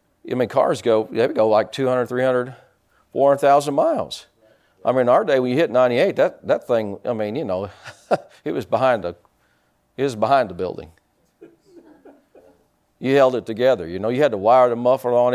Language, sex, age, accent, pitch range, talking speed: English, male, 50-69, American, 110-140 Hz, 185 wpm